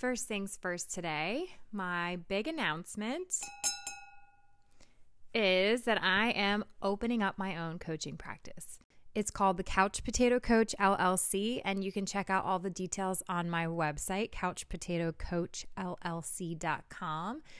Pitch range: 165-205 Hz